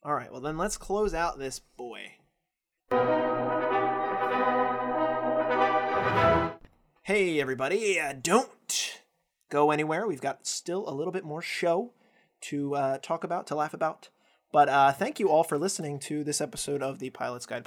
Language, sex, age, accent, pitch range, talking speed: English, male, 20-39, American, 135-175 Hz, 145 wpm